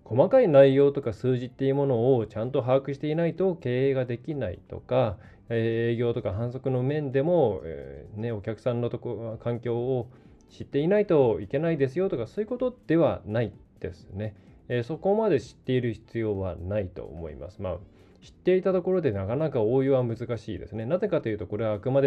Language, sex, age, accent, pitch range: Japanese, male, 20-39, native, 105-135 Hz